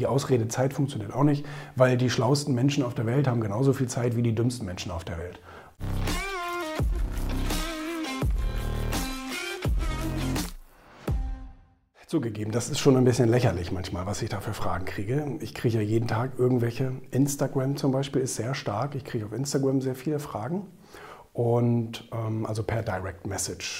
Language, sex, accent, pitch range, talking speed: German, male, German, 110-135 Hz, 155 wpm